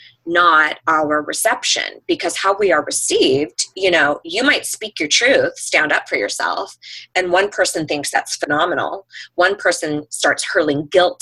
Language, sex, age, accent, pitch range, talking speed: English, female, 20-39, American, 165-275 Hz, 160 wpm